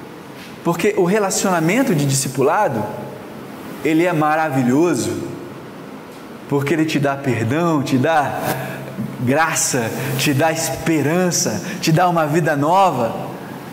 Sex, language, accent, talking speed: male, Portuguese, Brazilian, 105 wpm